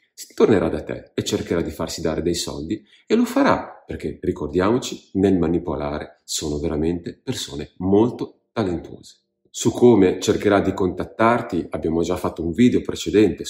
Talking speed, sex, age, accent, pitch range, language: 145 wpm, male, 40-59, native, 80-110 Hz, Italian